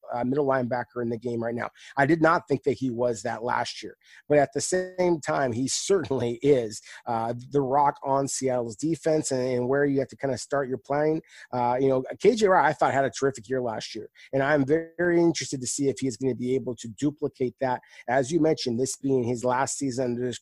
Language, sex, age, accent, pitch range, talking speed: English, male, 30-49, American, 125-150 Hz, 240 wpm